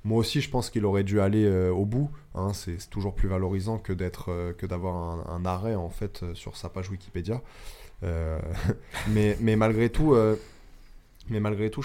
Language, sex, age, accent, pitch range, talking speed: French, male, 20-39, French, 90-110 Hz, 210 wpm